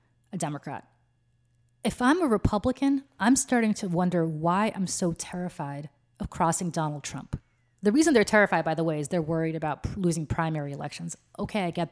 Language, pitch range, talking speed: English, 155-195 Hz, 175 wpm